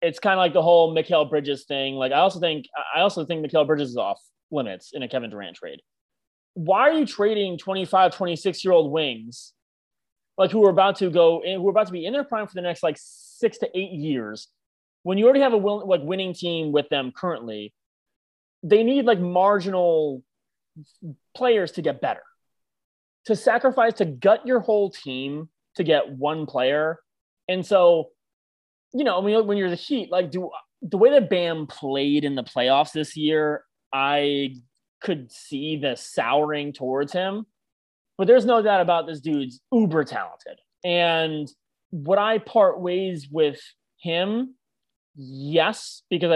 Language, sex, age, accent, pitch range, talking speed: English, male, 30-49, American, 150-200 Hz, 175 wpm